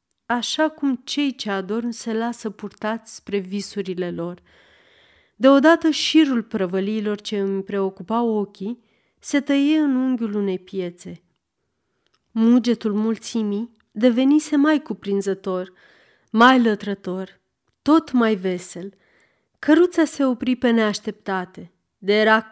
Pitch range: 195-255 Hz